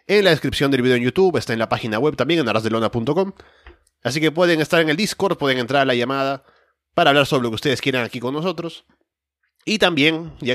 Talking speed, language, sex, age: 230 wpm, Spanish, male, 20-39